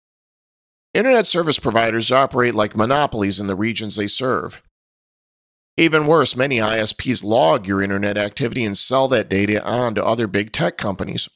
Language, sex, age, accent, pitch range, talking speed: English, male, 40-59, American, 110-145 Hz, 155 wpm